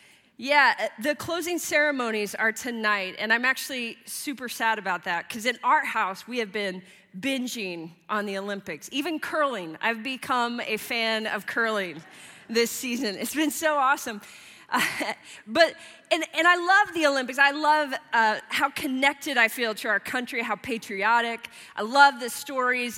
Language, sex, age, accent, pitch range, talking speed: English, female, 30-49, American, 210-265 Hz, 160 wpm